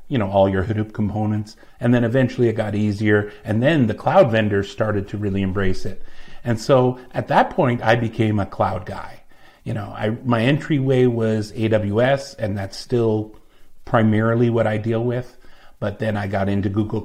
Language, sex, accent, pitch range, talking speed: English, male, American, 105-130 Hz, 185 wpm